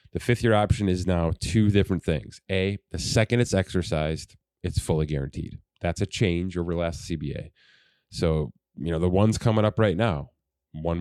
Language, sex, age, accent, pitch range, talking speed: English, male, 30-49, American, 80-105 Hz, 175 wpm